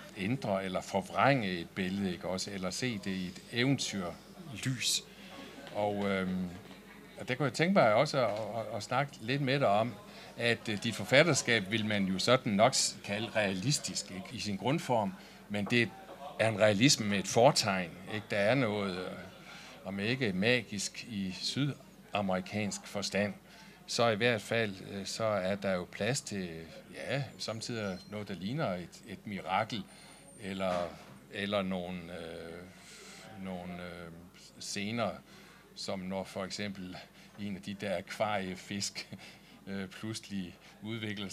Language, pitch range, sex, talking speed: Danish, 95-115 Hz, male, 145 wpm